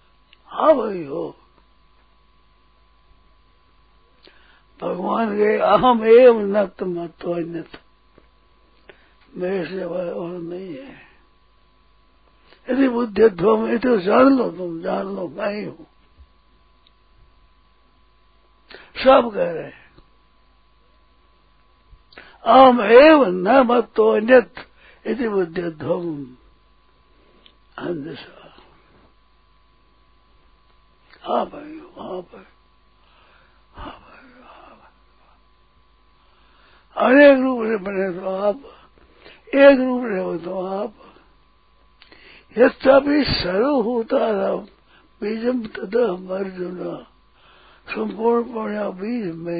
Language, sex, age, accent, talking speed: Hindi, male, 60-79, native, 75 wpm